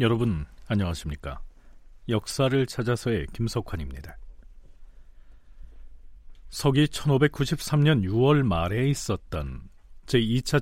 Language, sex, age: Korean, male, 40-59